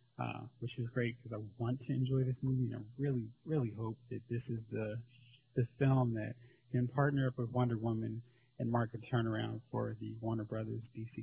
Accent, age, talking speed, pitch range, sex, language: American, 30-49, 205 wpm, 120-130 Hz, male, English